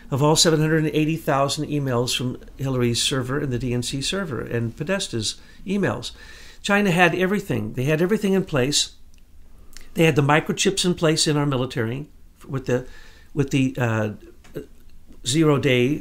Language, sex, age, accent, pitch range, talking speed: English, male, 50-69, American, 120-165 Hz, 155 wpm